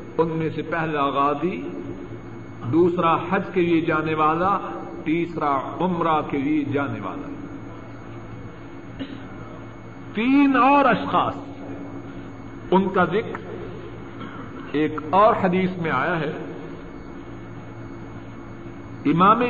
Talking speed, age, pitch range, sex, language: 90 wpm, 50-69, 150-230 Hz, male, Urdu